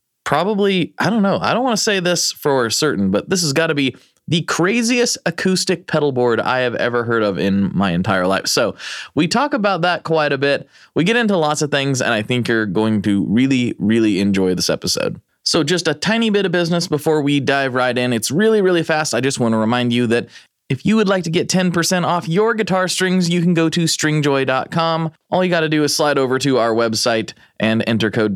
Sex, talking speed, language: male, 230 wpm, English